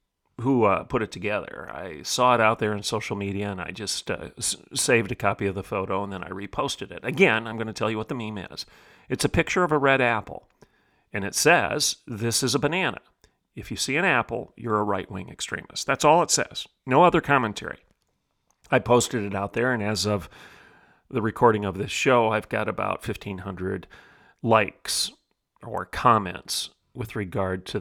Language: English